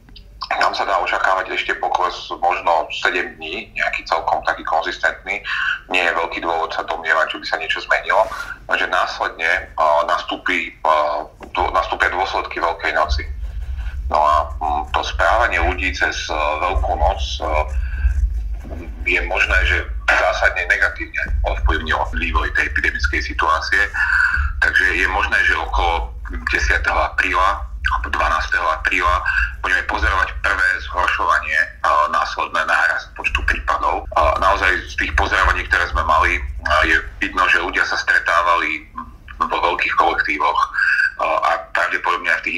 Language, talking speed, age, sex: Slovak, 125 wpm, 30-49, male